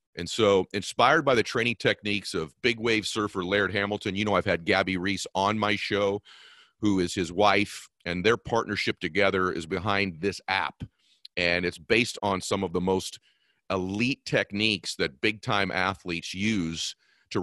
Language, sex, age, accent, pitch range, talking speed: English, male, 40-59, American, 95-110 Hz, 170 wpm